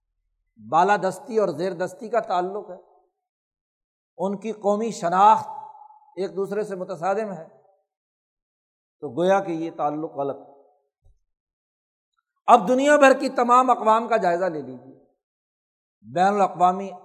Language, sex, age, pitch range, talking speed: Urdu, male, 60-79, 175-240 Hz, 125 wpm